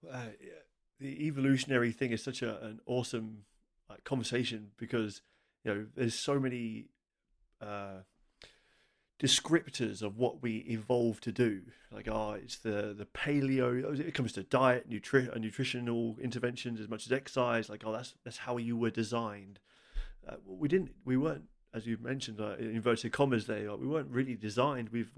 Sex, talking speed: male, 165 wpm